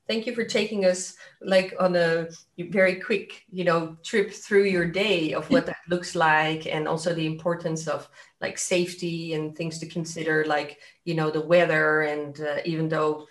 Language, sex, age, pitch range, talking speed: English, female, 30-49, 160-190 Hz, 185 wpm